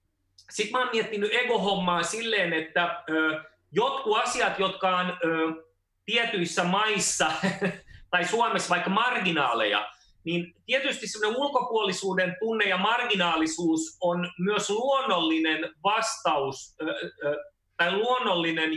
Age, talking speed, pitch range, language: 30-49, 95 wpm, 145-195 Hz, Finnish